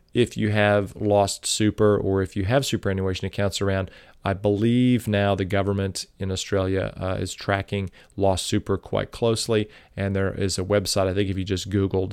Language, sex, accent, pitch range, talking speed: English, male, American, 95-110 Hz, 185 wpm